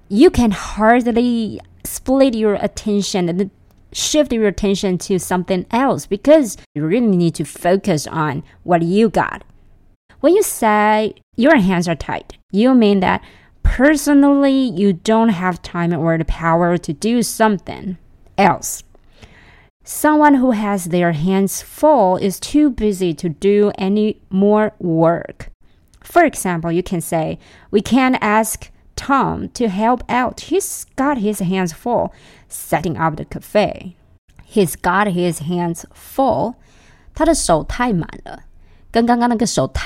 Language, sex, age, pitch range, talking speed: English, female, 30-49, 175-240 Hz, 130 wpm